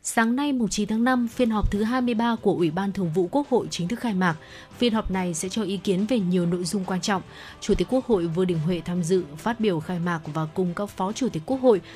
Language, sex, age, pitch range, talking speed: Vietnamese, female, 20-39, 180-230 Hz, 270 wpm